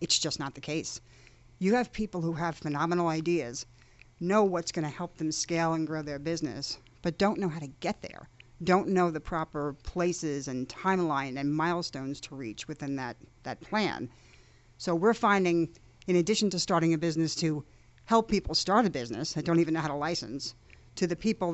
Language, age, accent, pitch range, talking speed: English, 50-69, American, 155-190 Hz, 190 wpm